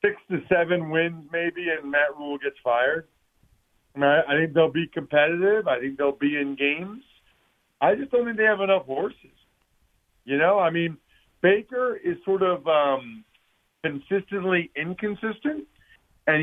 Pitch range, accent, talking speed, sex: 145-185 Hz, American, 150 wpm, male